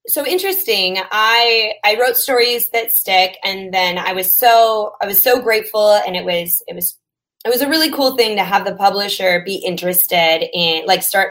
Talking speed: 195 wpm